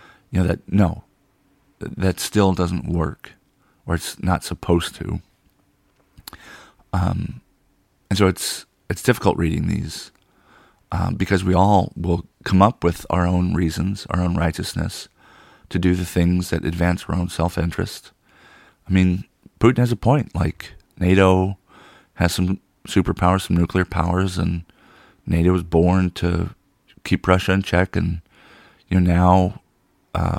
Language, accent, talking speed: English, American, 140 wpm